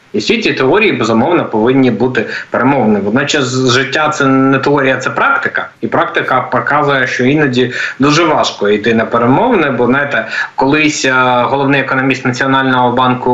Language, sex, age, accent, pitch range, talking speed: Ukrainian, male, 20-39, native, 125-140 Hz, 155 wpm